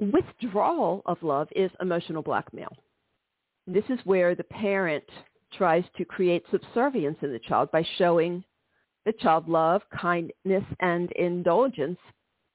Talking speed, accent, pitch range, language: 125 wpm, American, 170-220 Hz, English